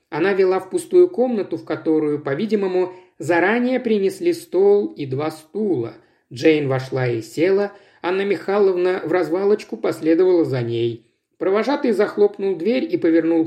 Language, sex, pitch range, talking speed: Russian, male, 150-230 Hz, 135 wpm